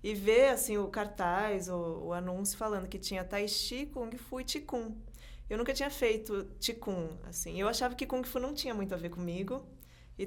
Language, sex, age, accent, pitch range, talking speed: Portuguese, female, 20-39, Brazilian, 185-235 Hz, 205 wpm